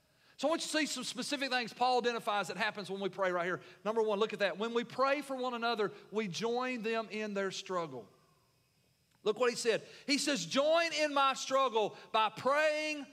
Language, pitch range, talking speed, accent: English, 165-265 Hz, 215 wpm, American